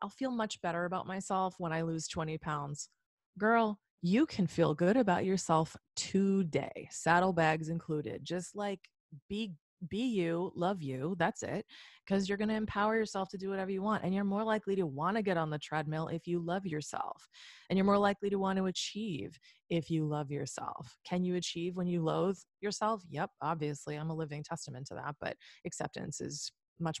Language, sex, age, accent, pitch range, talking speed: English, female, 20-39, American, 160-200 Hz, 195 wpm